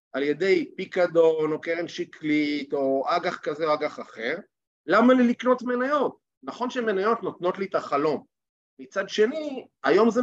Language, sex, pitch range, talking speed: Hebrew, male, 160-215 Hz, 155 wpm